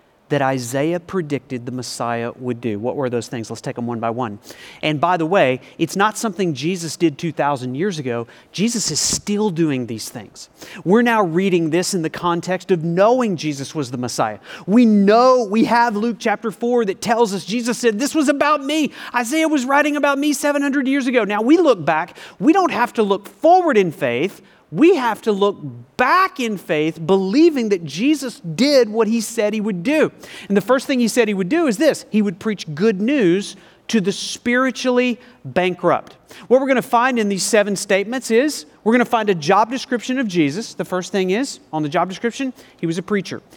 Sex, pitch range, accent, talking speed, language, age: male, 155-240 Hz, American, 205 wpm, English, 40-59